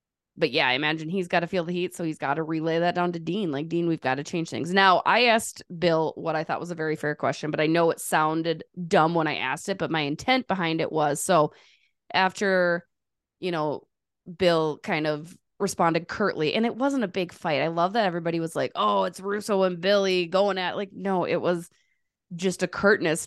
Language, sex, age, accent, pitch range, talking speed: English, female, 20-39, American, 155-195 Hz, 230 wpm